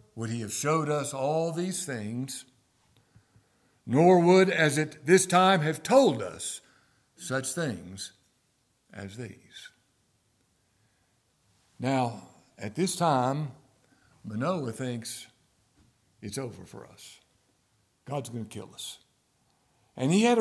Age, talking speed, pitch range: 60-79, 115 wpm, 120-175 Hz